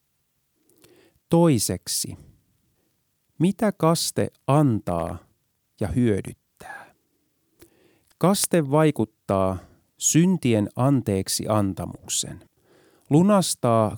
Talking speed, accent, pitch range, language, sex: 50 wpm, native, 100-155 Hz, Finnish, male